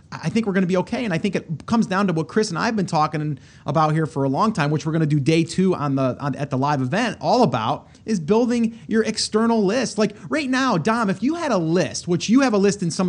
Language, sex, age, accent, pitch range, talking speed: English, male, 30-49, American, 150-215 Hz, 295 wpm